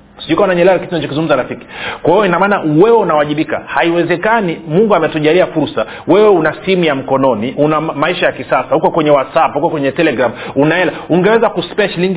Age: 40-59